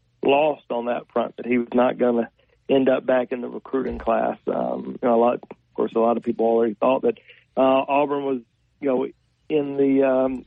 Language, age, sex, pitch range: English, 40-59, male, 120-135 Hz